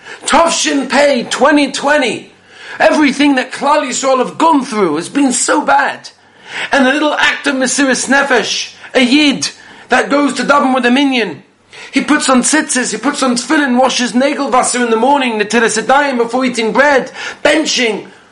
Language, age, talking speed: English, 40-59, 165 wpm